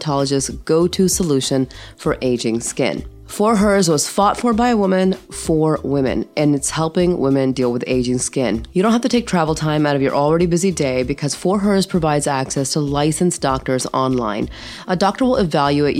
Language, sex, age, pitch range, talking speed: English, female, 30-49, 135-180 Hz, 185 wpm